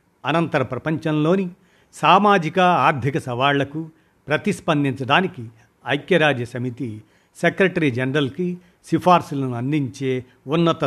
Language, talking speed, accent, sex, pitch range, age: Telugu, 70 wpm, native, male, 130-165 Hz, 50-69